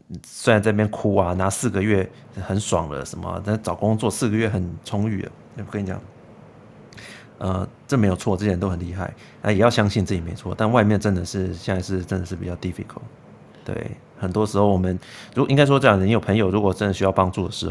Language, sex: Chinese, male